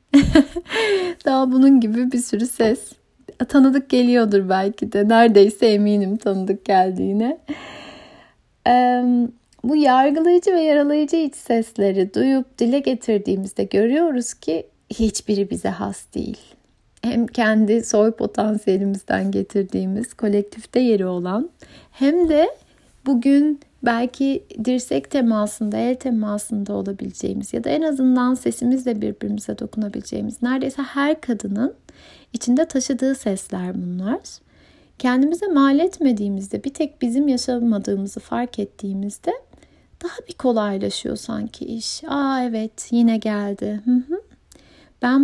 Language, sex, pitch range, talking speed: Turkish, female, 210-280 Hz, 105 wpm